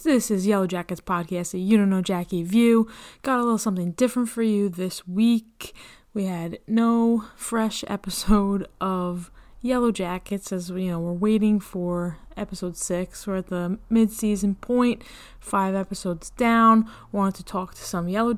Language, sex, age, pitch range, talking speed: English, female, 20-39, 180-215 Hz, 170 wpm